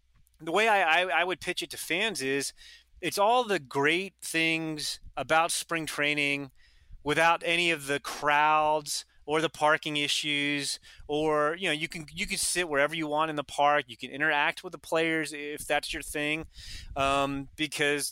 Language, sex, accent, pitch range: English, male, American, 140-175 Hz